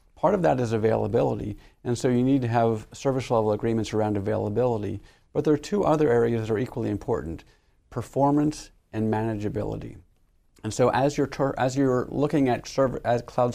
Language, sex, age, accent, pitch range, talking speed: English, male, 50-69, American, 110-130 Hz, 180 wpm